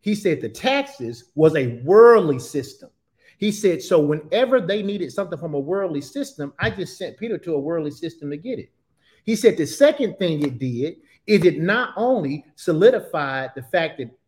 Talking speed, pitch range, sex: 190 wpm, 150-220 Hz, male